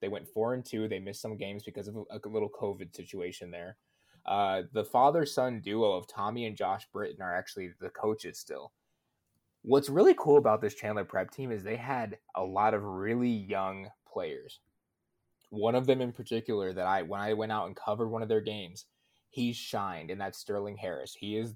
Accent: American